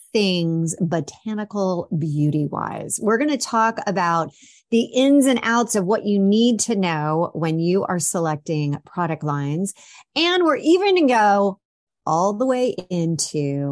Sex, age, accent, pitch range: female, 30-49, American, 160-240 Hz